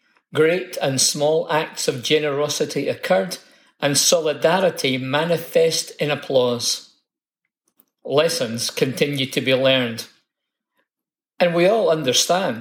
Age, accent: 50-69, British